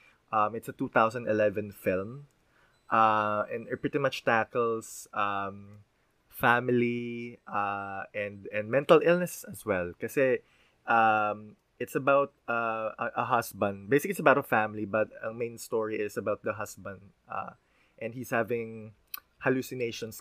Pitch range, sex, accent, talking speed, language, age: 105-125 Hz, male, native, 135 wpm, Filipino, 20-39